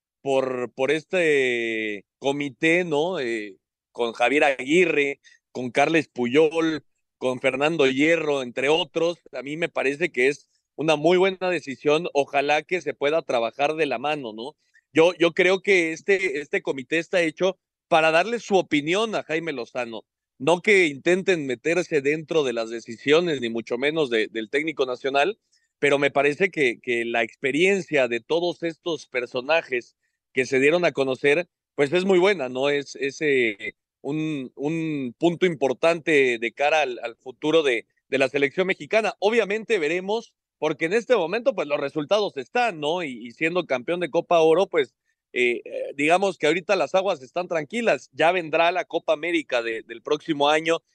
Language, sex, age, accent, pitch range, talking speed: Spanish, male, 40-59, Mexican, 130-180 Hz, 165 wpm